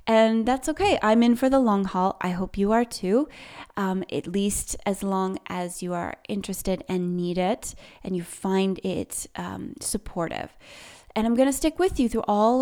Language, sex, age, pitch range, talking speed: English, female, 20-39, 185-240 Hz, 195 wpm